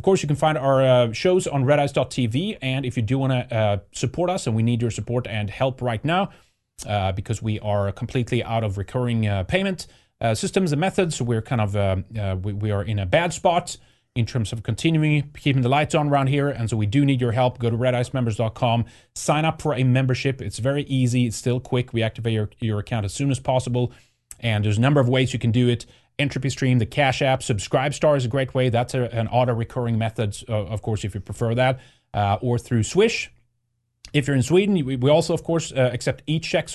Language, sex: English, male